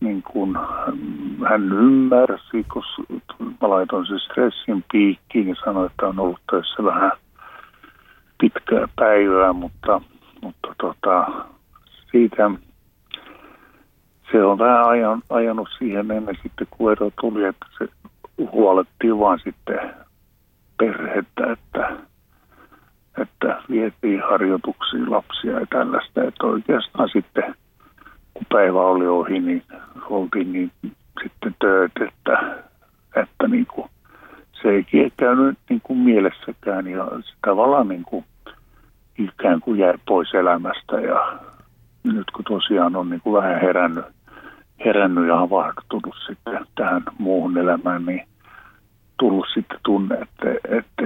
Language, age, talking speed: Finnish, 60-79, 110 wpm